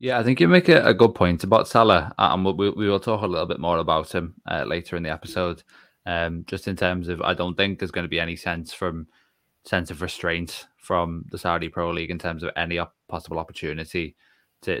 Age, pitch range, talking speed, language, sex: 20-39, 85-90 Hz, 240 wpm, English, male